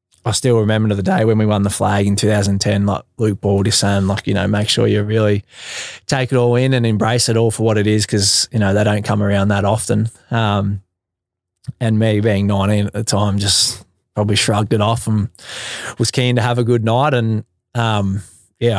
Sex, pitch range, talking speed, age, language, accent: male, 105-115 Hz, 215 wpm, 20-39, English, Australian